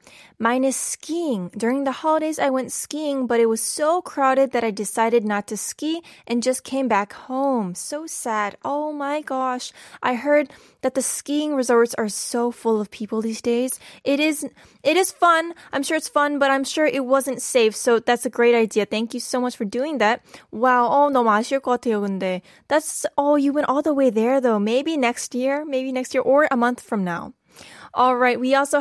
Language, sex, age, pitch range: Korean, female, 10-29, 240-295 Hz